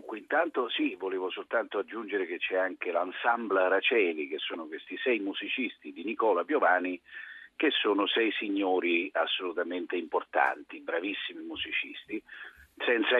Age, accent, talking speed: 50-69, native, 125 wpm